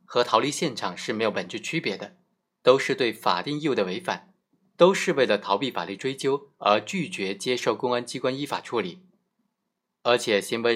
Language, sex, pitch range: Chinese, male, 105-145 Hz